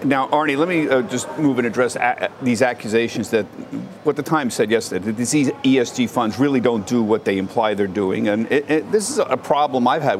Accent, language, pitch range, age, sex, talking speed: American, English, 115-160 Hz, 50-69, male, 205 wpm